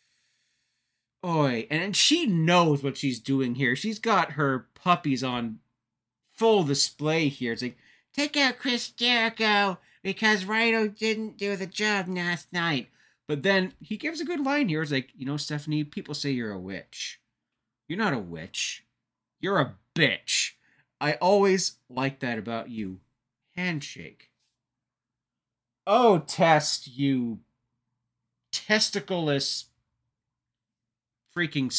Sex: male